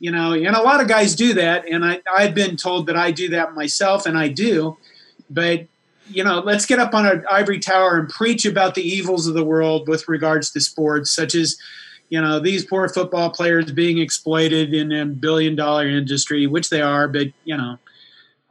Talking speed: 210 wpm